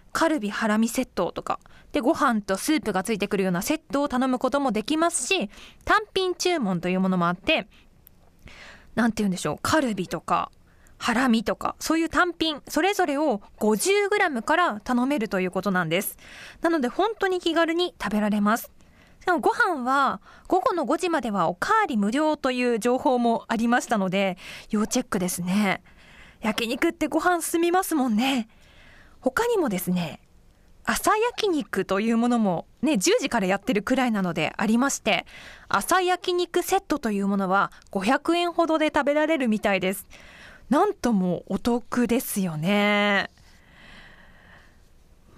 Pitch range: 200-320 Hz